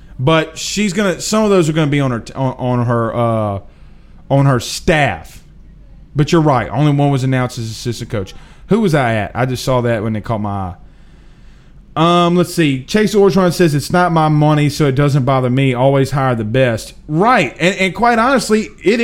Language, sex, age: English, male, 30-49